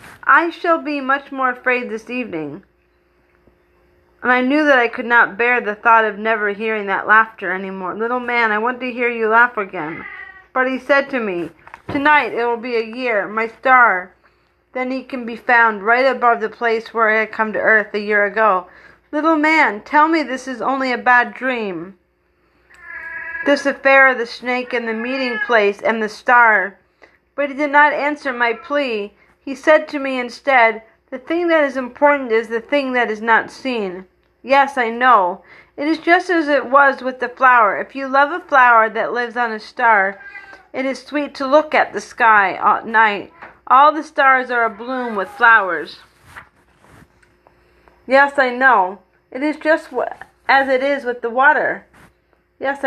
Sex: female